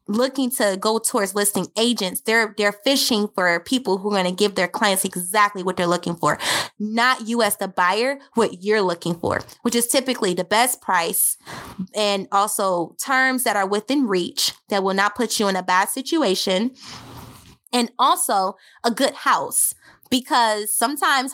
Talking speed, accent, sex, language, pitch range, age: 170 wpm, American, female, English, 190-230 Hz, 20-39